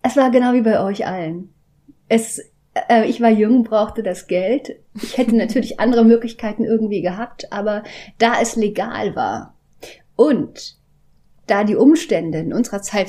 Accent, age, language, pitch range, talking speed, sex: German, 30-49, German, 185-230 Hz, 155 wpm, female